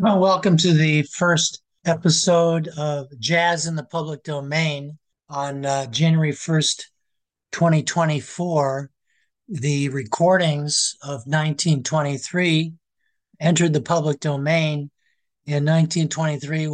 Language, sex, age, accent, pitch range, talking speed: English, male, 60-79, American, 140-165 Hz, 95 wpm